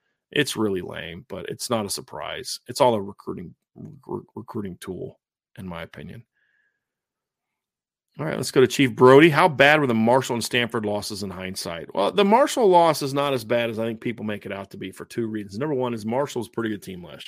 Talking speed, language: 220 wpm, English